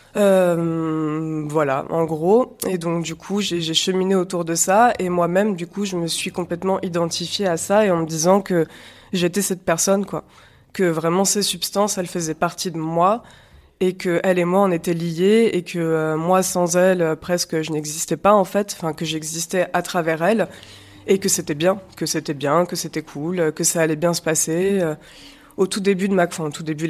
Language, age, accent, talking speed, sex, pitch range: French, 20-39, French, 210 wpm, female, 160-185 Hz